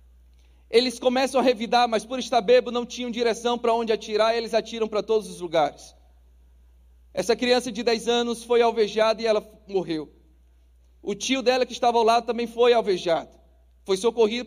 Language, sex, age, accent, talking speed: Portuguese, male, 40-59, Brazilian, 180 wpm